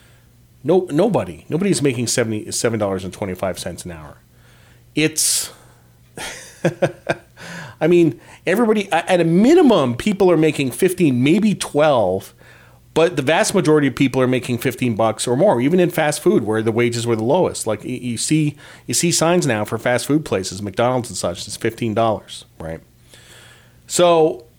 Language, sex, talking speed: English, male, 165 wpm